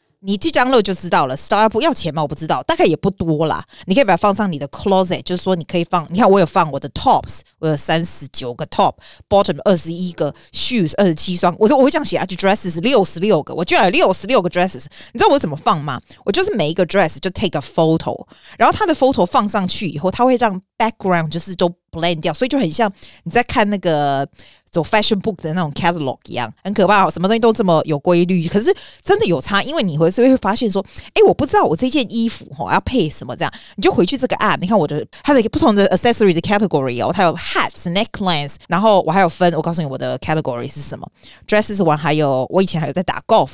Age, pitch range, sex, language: 30-49, 165-220 Hz, female, Chinese